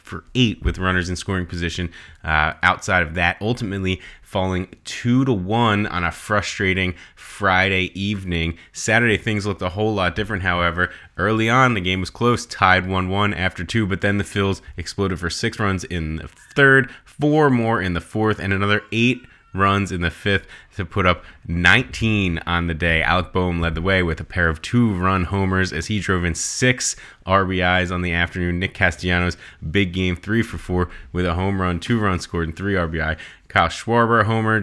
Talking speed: 190 wpm